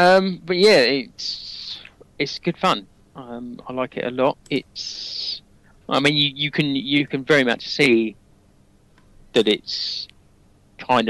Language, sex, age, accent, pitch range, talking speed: English, male, 20-39, British, 100-115 Hz, 145 wpm